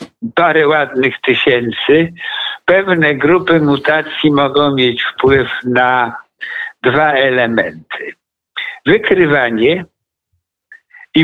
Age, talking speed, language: 60-79, 75 wpm, Polish